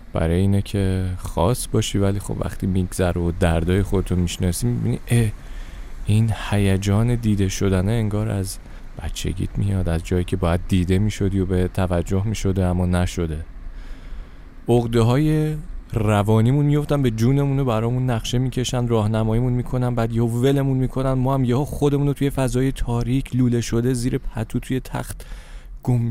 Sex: male